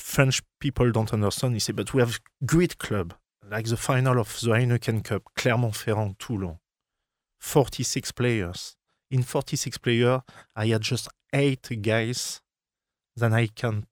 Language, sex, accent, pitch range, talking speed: English, male, French, 110-130 Hz, 140 wpm